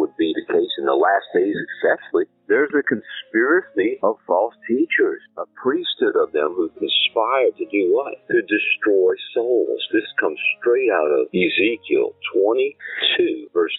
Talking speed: 150 wpm